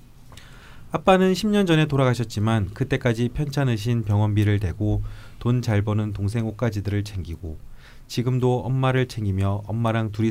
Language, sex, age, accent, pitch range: Korean, male, 30-49, native, 105-135 Hz